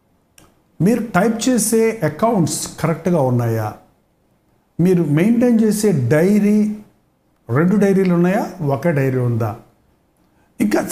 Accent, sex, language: native, male, Telugu